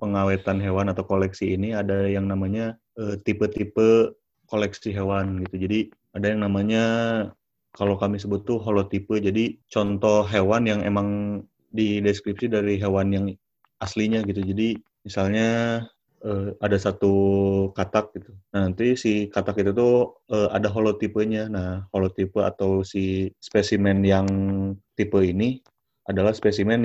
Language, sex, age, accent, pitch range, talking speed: Indonesian, male, 20-39, native, 100-110 Hz, 130 wpm